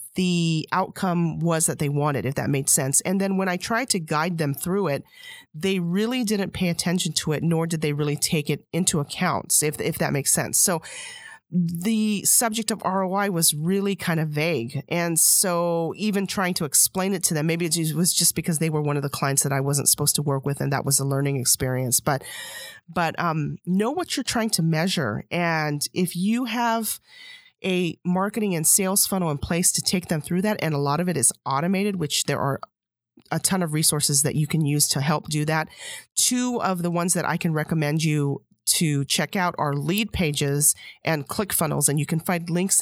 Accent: American